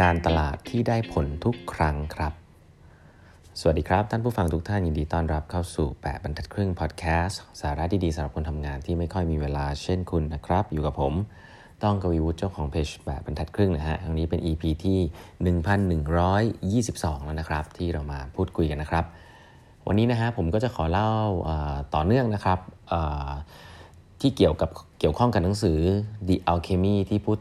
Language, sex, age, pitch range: Thai, male, 30-49, 80-100 Hz